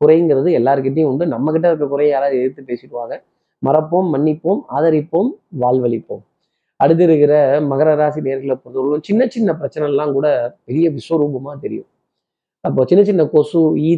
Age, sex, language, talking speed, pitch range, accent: 30-49, male, Tamil, 115 wpm, 140-175 Hz, native